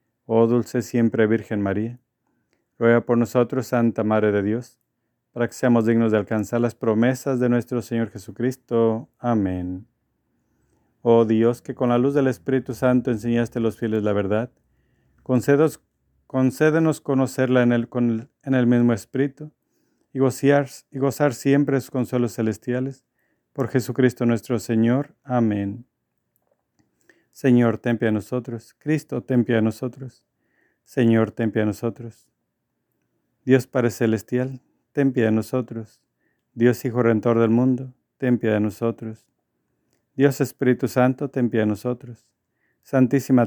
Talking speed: 135 wpm